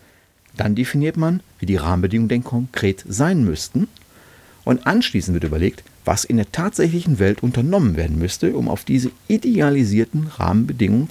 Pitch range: 90-115 Hz